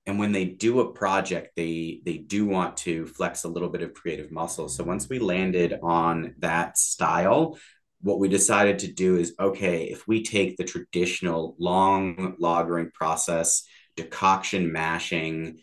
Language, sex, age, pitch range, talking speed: English, male, 30-49, 85-105 Hz, 160 wpm